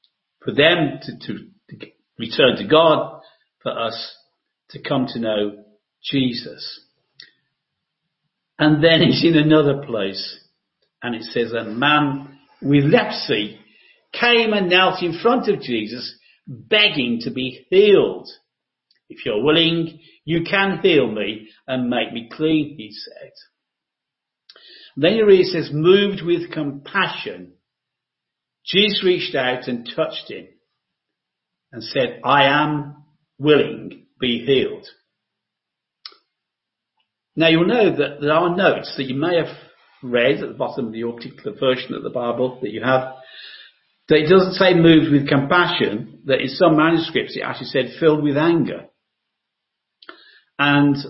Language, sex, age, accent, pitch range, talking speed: English, male, 50-69, British, 125-170 Hz, 135 wpm